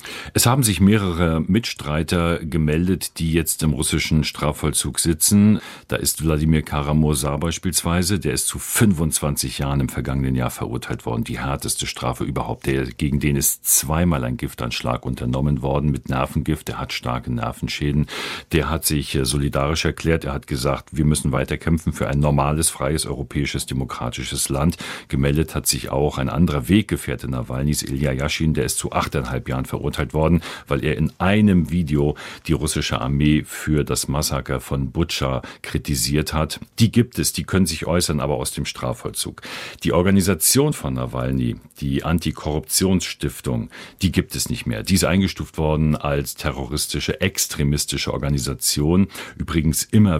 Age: 50-69